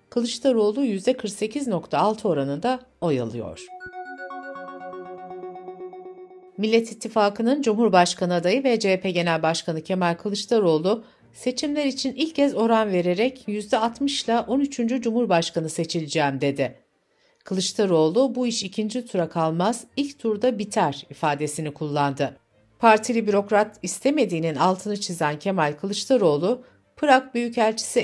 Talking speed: 100 wpm